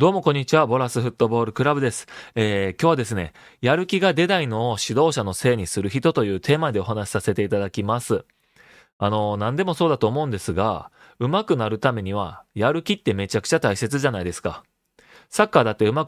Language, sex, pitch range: Japanese, male, 105-150 Hz